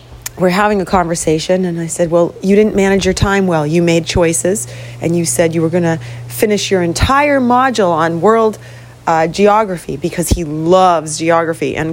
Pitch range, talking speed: 150-200 Hz, 185 wpm